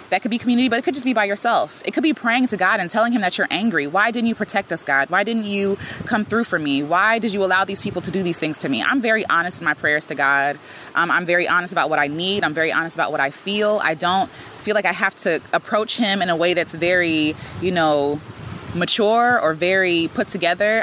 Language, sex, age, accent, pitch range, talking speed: English, female, 20-39, American, 170-220 Hz, 265 wpm